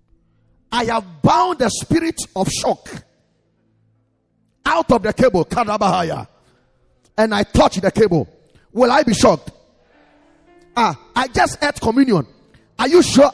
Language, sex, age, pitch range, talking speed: English, male, 30-49, 180-280 Hz, 125 wpm